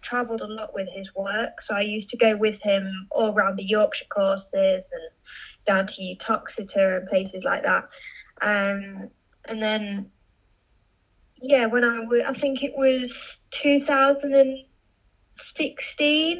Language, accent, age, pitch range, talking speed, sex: English, British, 10-29, 205-250 Hz, 140 wpm, female